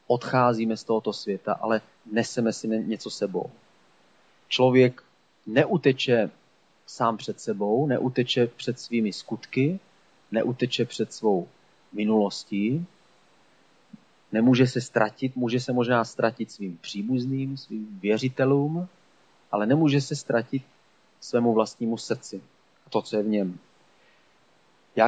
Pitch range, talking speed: 115-135 Hz, 110 wpm